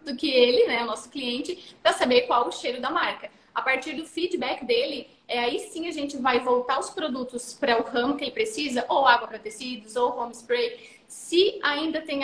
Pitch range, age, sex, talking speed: 245-295 Hz, 20-39, female, 210 wpm